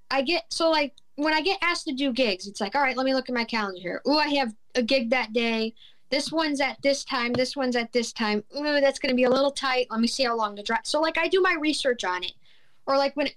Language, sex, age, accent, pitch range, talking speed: English, female, 10-29, American, 220-275 Hz, 295 wpm